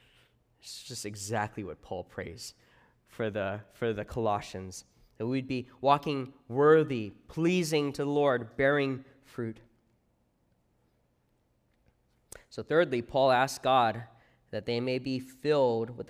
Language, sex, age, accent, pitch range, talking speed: English, male, 20-39, American, 120-180 Hz, 125 wpm